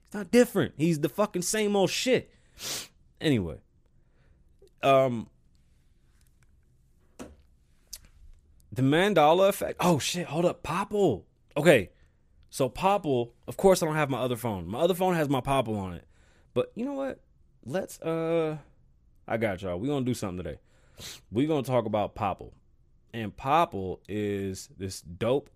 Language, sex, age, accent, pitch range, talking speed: English, male, 20-39, American, 95-150 Hz, 140 wpm